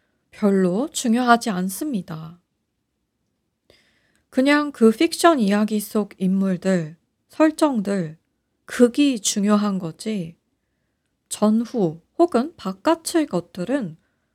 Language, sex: Korean, female